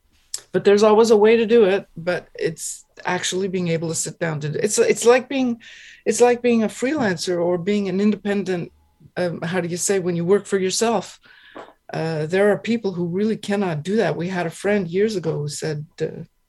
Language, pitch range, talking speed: English, 165-210 Hz, 210 wpm